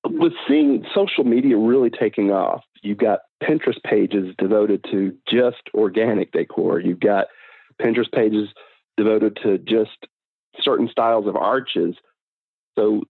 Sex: male